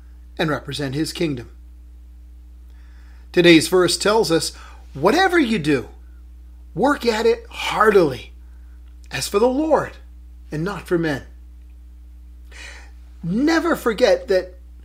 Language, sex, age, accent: English, male, 40-59, American